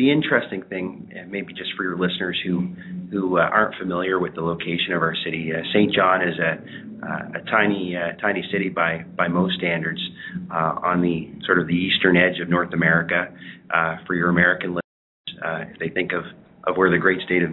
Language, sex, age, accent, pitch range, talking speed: English, male, 30-49, American, 85-95 Hz, 210 wpm